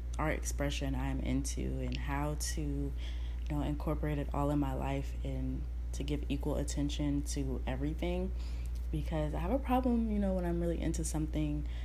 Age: 20-39